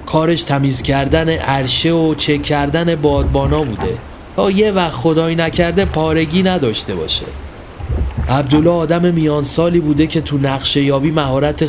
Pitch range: 115-165 Hz